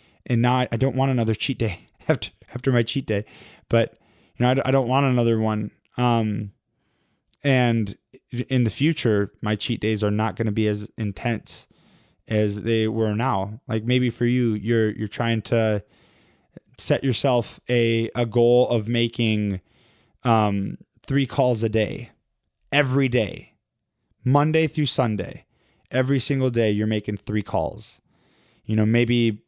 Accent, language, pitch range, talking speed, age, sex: American, English, 110-125 Hz, 150 wpm, 20-39, male